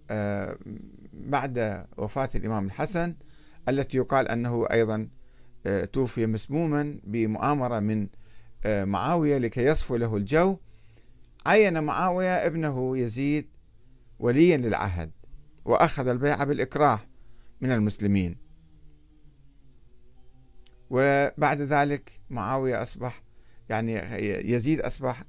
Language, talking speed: Arabic, 85 wpm